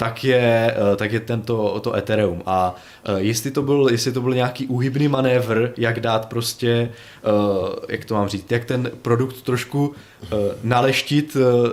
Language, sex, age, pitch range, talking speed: Czech, male, 20-39, 105-120 Hz, 130 wpm